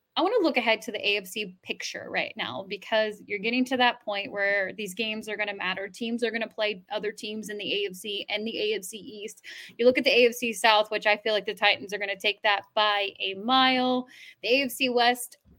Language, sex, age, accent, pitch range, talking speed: English, female, 10-29, American, 210-245 Hz, 235 wpm